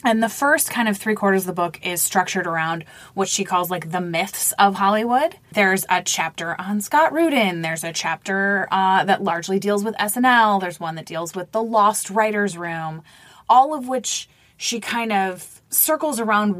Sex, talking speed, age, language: female, 190 wpm, 20-39, English